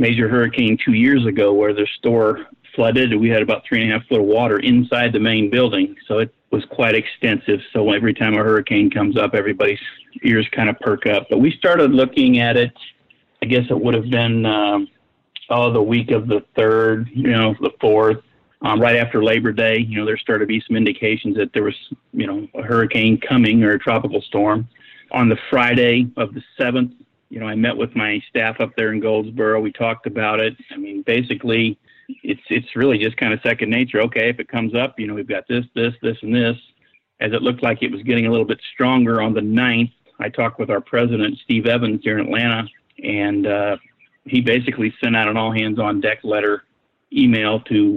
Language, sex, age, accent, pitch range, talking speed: English, male, 50-69, American, 110-125 Hz, 215 wpm